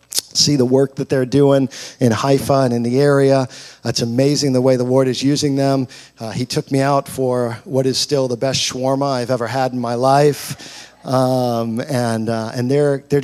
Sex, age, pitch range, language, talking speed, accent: male, 50-69, 125-145 Hz, English, 205 wpm, American